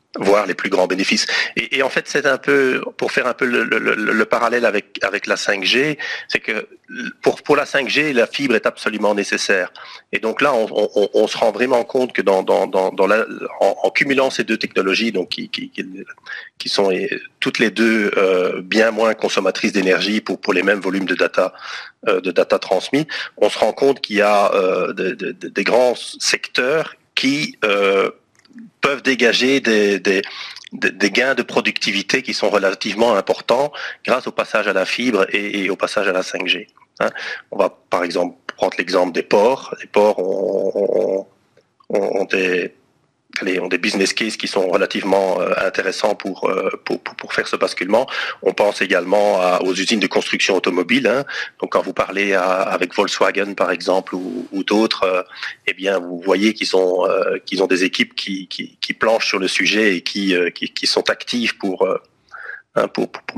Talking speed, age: 195 wpm, 40-59